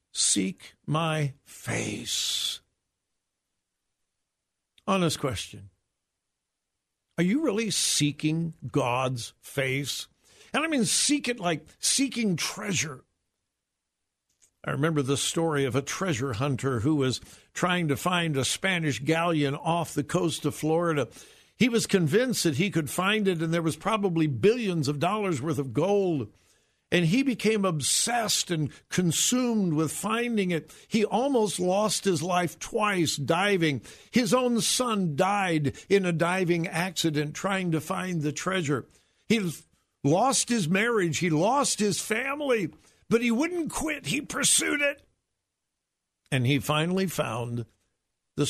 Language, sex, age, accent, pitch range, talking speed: English, male, 60-79, American, 140-195 Hz, 130 wpm